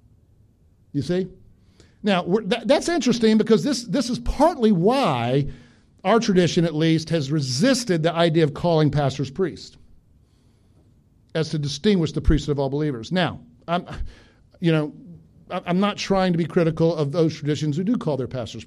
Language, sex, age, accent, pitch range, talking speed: English, male, 50-69, American, 135-170 Hz, 165 wpm